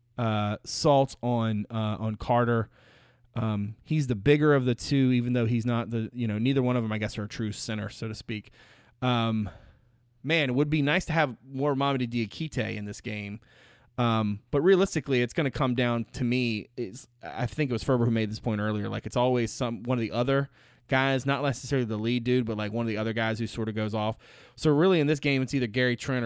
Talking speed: 235 wpm